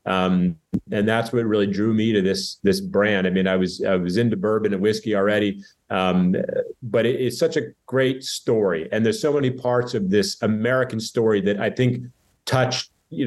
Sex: male